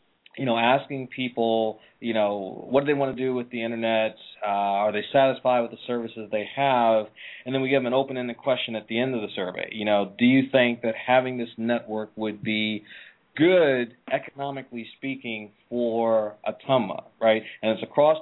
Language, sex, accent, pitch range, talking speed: English, male, American, 115-140 Hz, 190 wpm